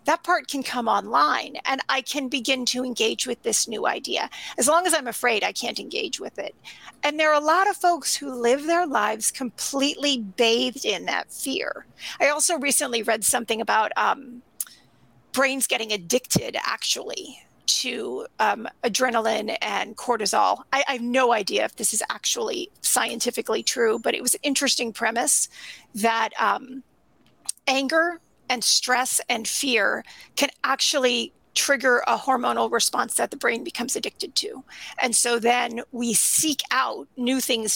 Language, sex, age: English, female, 40-59